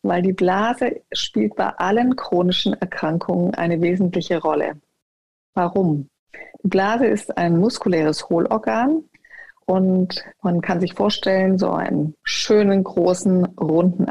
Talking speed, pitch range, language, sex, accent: 120 wpm, 175-215 Hz, German, female, German